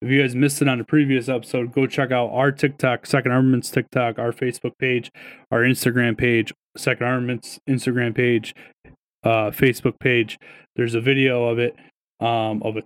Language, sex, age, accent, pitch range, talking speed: English, male, 20-39, American, 120-145 Hz, 175 wpm